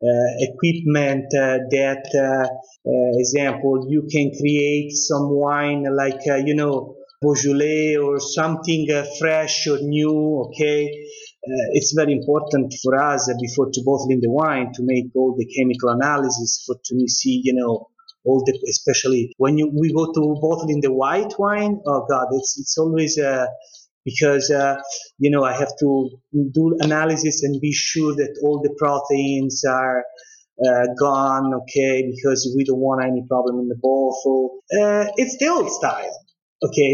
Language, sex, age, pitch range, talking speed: English, male, 30-49, 135-160 Hz, 165 wpm